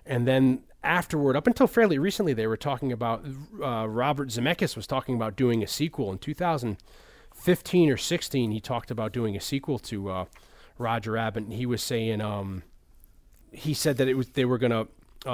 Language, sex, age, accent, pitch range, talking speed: English, male, 30-49, American, 110-140 Hz, 190 wpm